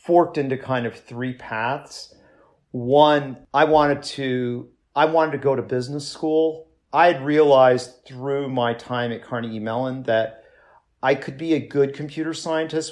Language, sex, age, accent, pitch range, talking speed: English, male, 50-69, American, 120-145 Hz, 160 wpm